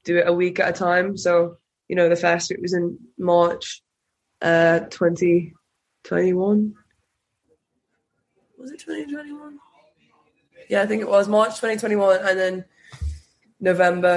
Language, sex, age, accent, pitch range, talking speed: English, female, 20-39, British, 170-200 Hz, 130 wpm